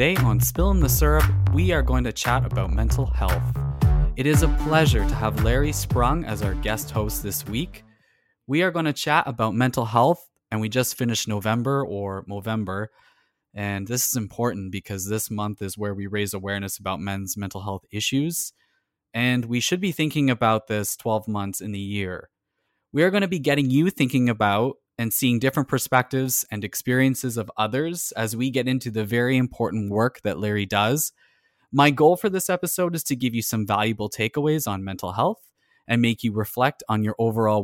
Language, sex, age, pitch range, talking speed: English, male, 20-39, 105-135 Hz, 195 wpm